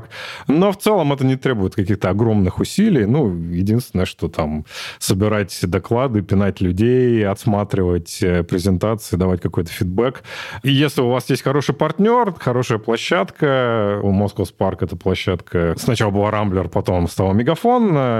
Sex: male